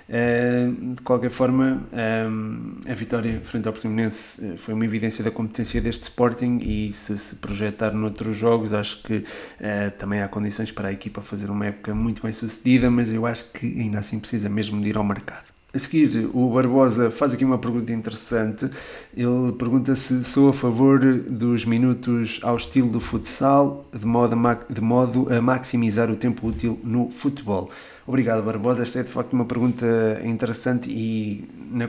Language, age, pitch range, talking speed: Portuguese, 20-39, 110-125 Hz, 165 wpm